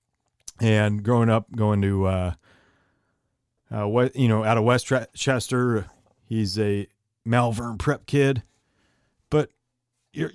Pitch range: 110-140 Hz